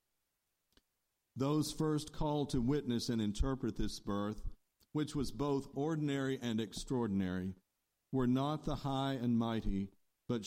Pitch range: 100-135 Hz